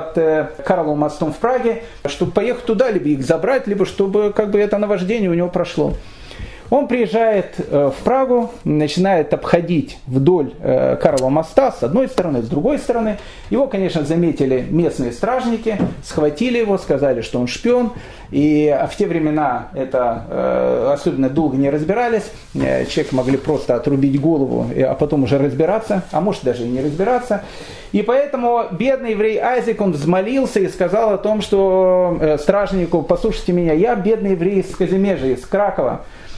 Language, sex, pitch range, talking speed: Russian, male, 160-230 Hz, 150 wpm